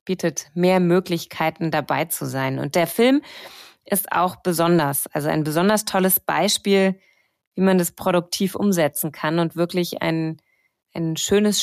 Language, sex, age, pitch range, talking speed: German, female, 30-49, 170-225 Hz, 145 wpm